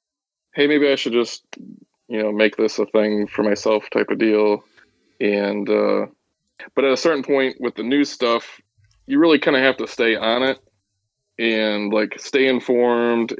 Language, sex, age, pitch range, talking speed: English, male, 20-39, 105-125 Hz, 180 wpm